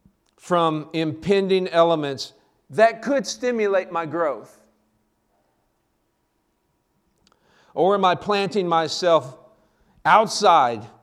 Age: 50-69